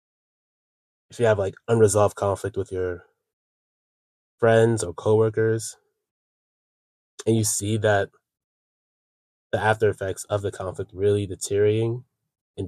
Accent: American